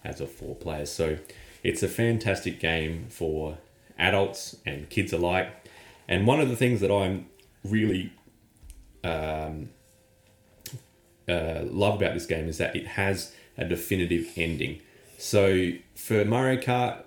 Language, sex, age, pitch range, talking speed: English, male, 30-49, 80-105 Hz, 135 wpm